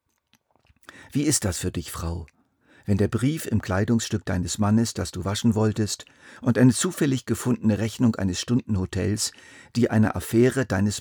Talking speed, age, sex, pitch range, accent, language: 155 wpm, 50-69, male, 95-125 Hz, German, German